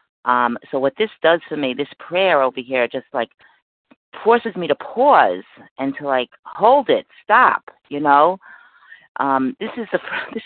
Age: 40-59